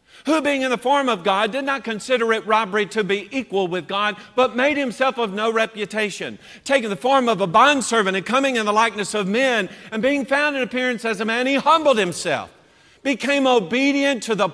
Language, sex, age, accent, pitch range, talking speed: English, male, 50-69, American, 195-260 Hz, 210 wpm